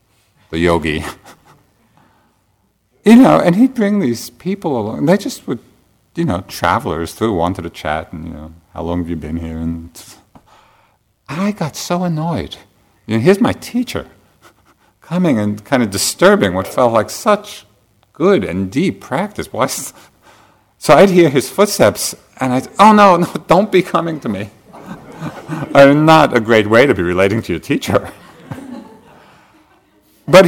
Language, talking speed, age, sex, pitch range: English, 155 wpm, 50-69, male, 85-140 Hz